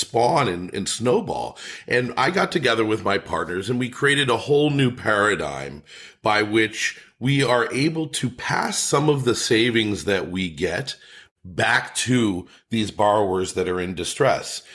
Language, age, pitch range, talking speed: English, 40-59, 100-125 Hz, 165 wpm